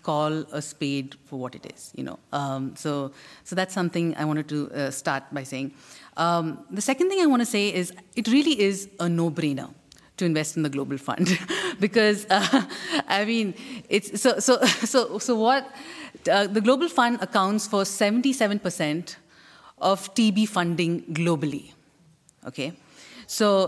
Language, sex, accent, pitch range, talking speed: Danish, female, Indian, 170-225 Hz, 160 wpm